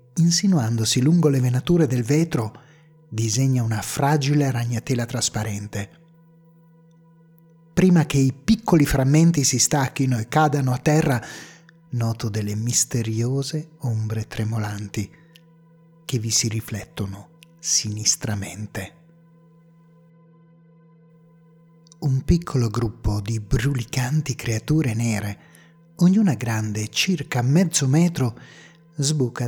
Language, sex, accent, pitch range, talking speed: Italian, male, native, 120-165 Hz, 90 wpm